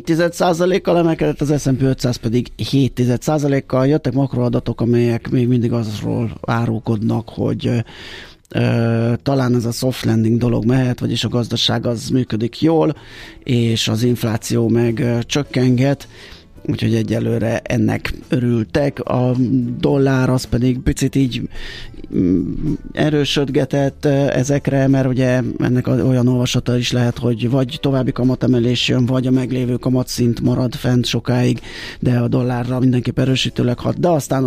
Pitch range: 115-130 Hz